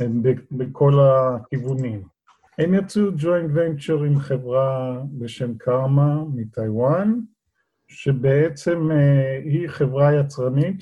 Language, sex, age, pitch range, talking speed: Hebrew, male, 50-69, 130-165 Hz, 85 wpm